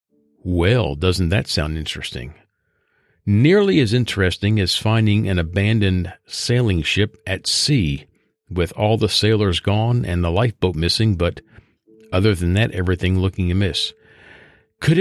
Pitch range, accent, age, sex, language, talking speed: 95-125 Hz, American, 50-69, male, English, 130 wpm